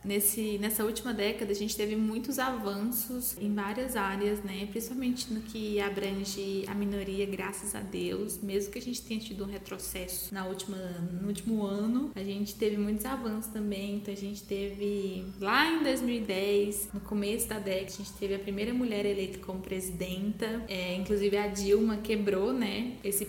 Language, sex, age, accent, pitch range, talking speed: Portuguese, female, 20-39, Brazilian, 195-215 Hz, 175 wpm